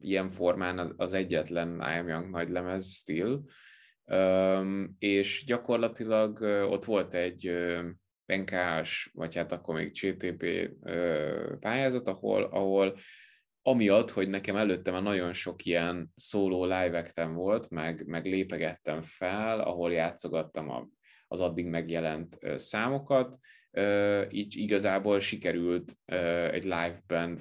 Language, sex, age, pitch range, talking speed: English, male, 20-39, 85-100 Hz, 110 wpm